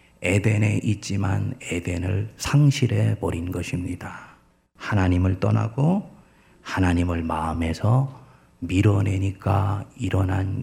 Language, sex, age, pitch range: Korean, male, 40-59, 95-125 Hz